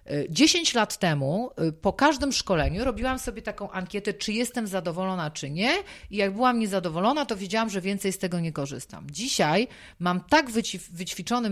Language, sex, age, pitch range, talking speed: Polish, female, 30-49, 165-225 Hz, 160 wpm